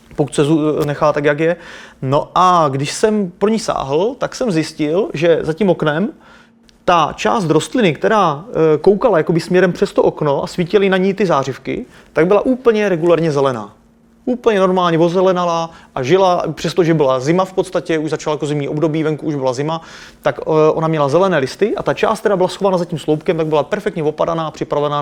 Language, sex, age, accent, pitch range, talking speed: Czech, male, 30-49, native, 150-180 Hz, 190 wpm